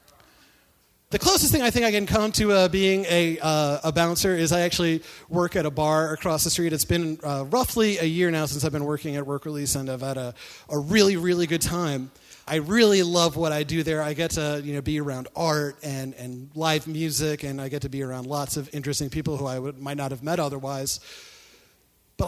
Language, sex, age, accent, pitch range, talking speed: English, male, 30-49, American, 140-170 Hz, 230 wpm